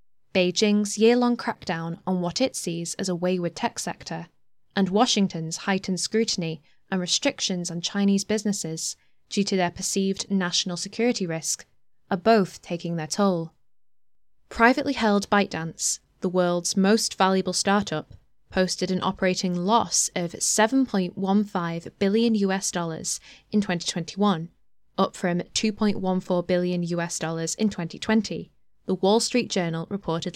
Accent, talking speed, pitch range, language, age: British, 130 wpm, 175-215 Hz, English, 10-29